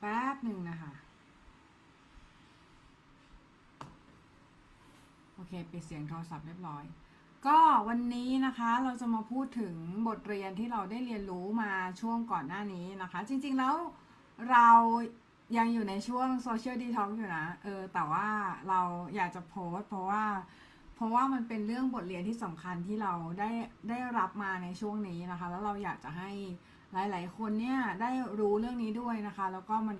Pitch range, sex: 185-230 Hz, female